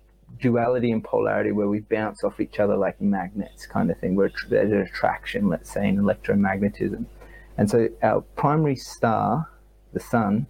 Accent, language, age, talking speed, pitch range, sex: Australian, English, 30-49, 170 wpm, 105-120 Hz, male